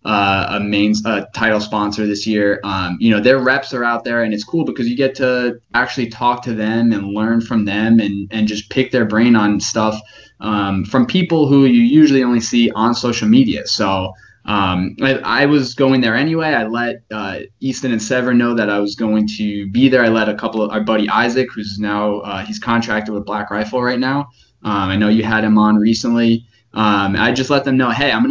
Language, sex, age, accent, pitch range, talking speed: English, male, 20-39, American, 105-120 Hz, 225 wpm